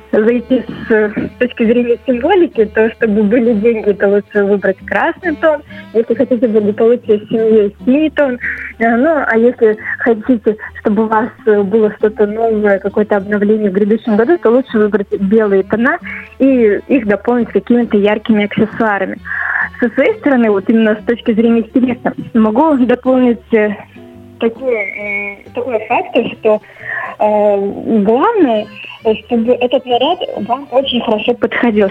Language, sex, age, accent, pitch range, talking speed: Russian, female, 20-39, native, 215-250 Hz, 135 wpm